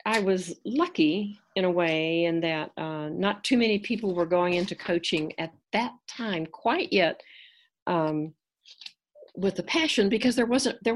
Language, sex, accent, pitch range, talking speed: English, female, American, 155-200 Hz, 165 wpm